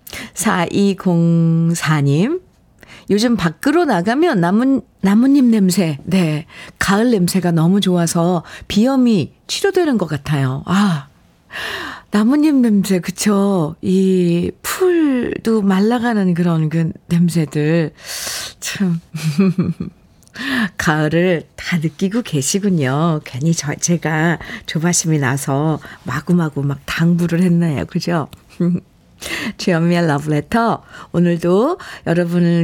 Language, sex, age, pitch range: Korean, female, 50-69, 165-225 Hz